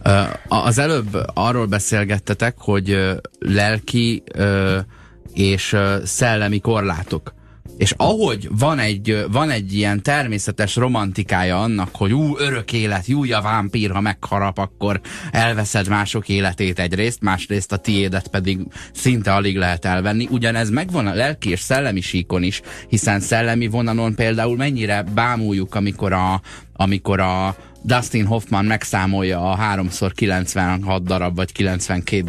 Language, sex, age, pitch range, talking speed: Hungarian, male, 30-49, 100-115 Hz, 125 wpm